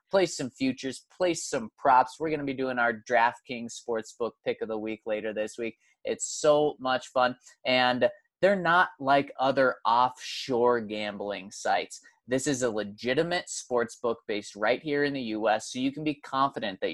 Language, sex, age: English, male, 20-39